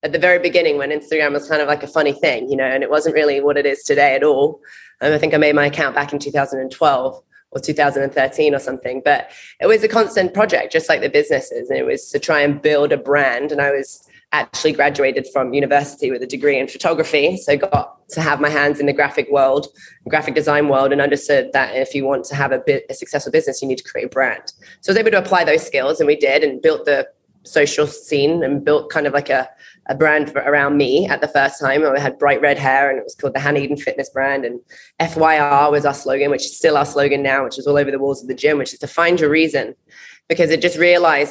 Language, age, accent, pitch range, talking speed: English, 20-39, British, 140-170 Hz, 255 wpm